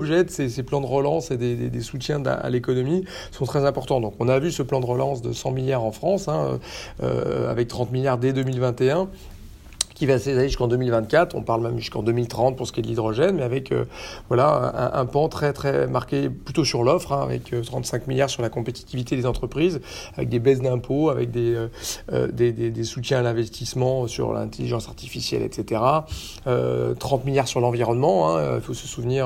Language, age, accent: French, 40-59, French